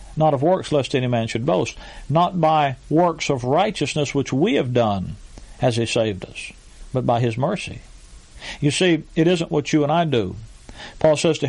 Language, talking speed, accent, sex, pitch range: English, 195 wpm, American, male, 130-160 Hz